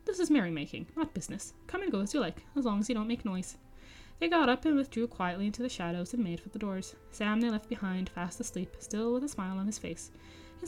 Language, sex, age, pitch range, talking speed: English, female, 20-39, 185-240 Hz, 260 wpm